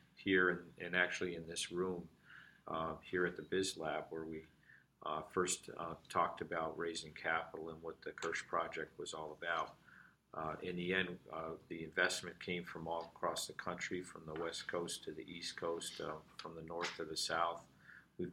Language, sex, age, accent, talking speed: English, male, 50-69, American, 195 wpm